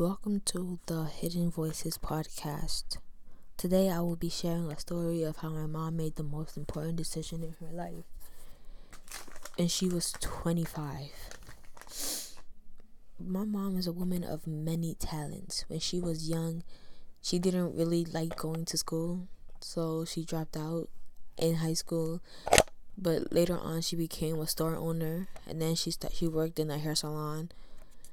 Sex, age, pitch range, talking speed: female, 10-29, 155-170 Hz, 155 wpm